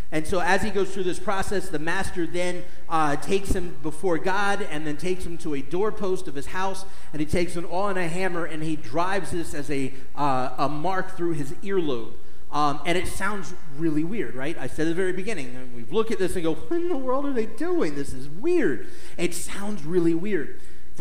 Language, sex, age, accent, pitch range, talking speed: English, male, 30-49, American, 145-180 Hz, 230 wpm